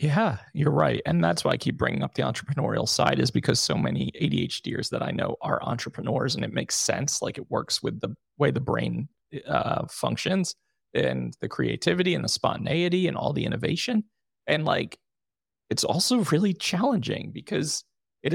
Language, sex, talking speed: English, male, 180 wpm